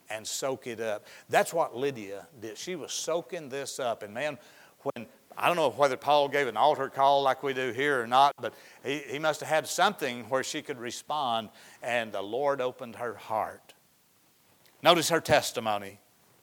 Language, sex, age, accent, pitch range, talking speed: English, male, 60-79, American, 120-155 Hz, 185 wpm